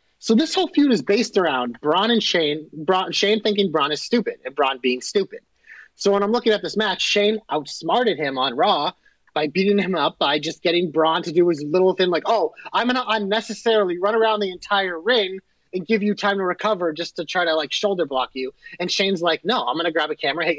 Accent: American